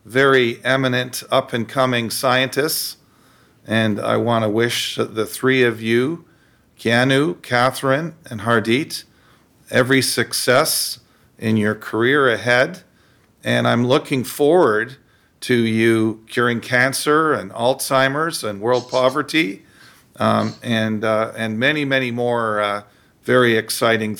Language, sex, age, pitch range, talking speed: English, male, 50-69, 110-130 Hz, 115 wpm